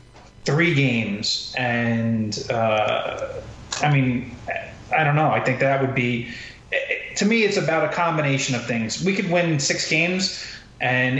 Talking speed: 150 wpm